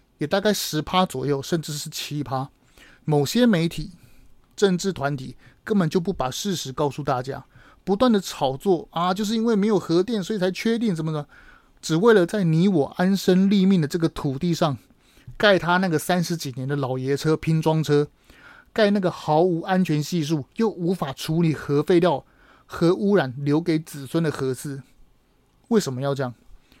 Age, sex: 30-49, male